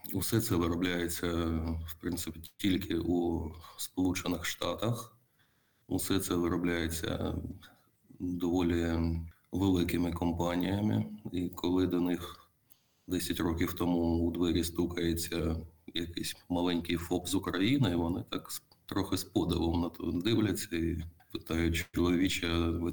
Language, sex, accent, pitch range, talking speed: Ukrainian, male, native, 85-90 Hz, 110 wpm